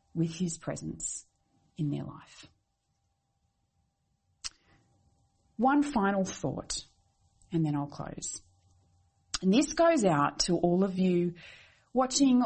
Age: 30-49